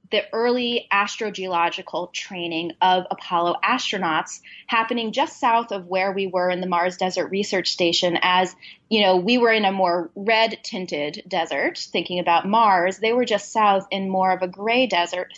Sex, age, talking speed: female, 20-39, 170 wpm